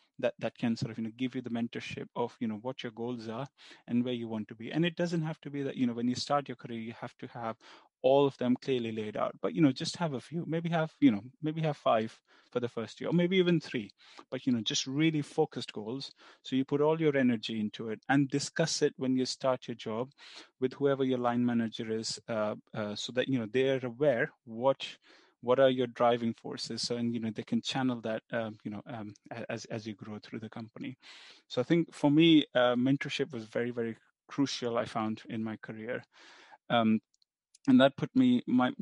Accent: Indian